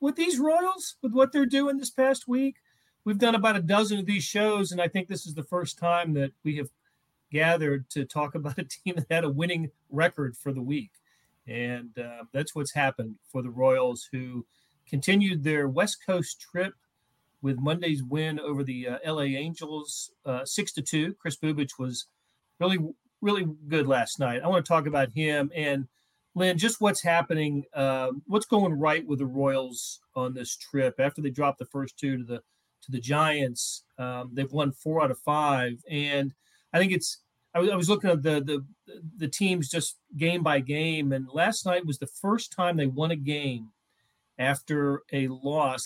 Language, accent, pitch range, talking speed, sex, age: English, American, 135-175 Hz, 190 wpm, male, 40-59